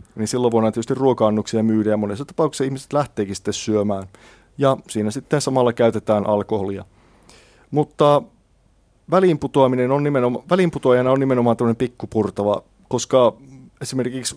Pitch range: 110-125 Hz